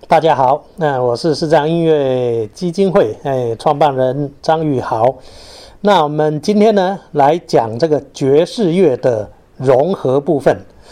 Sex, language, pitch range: male, Chinese, 130-160 Hz